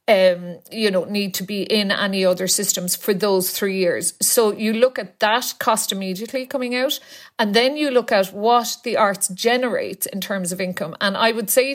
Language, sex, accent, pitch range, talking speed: English, female, Irish, 190-240 Hz, 205 wpm